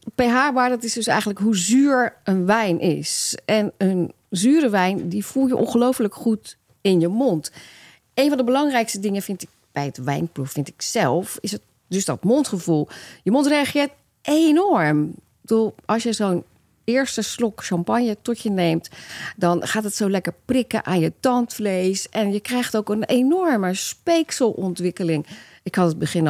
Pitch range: 165-245 Hz